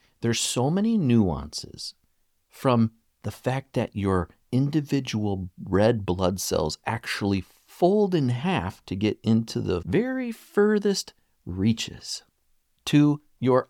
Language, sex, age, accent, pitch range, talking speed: English, male, 50-69, American, 90-125 Hz, 115 wpm